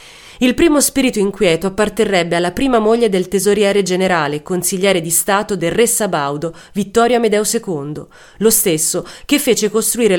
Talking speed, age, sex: 145 wpm, 30-49, female